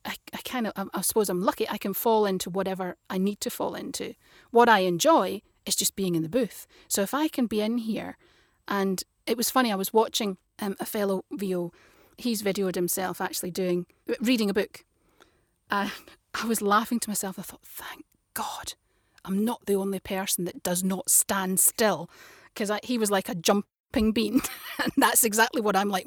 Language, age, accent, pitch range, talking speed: English, 30-49, British, 195-255 Hz, 200 wpm